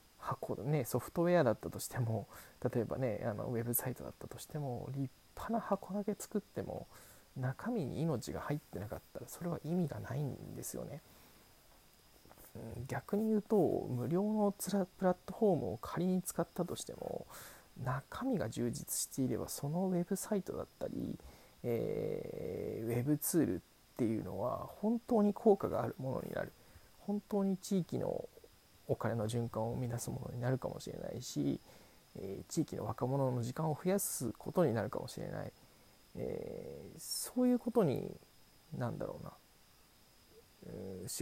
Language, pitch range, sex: Japanese, 125-200 Hz, male